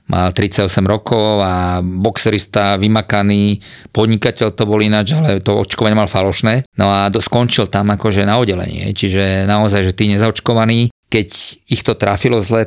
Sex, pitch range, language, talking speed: male, 100-115 Hz, Slovak, 155 wpm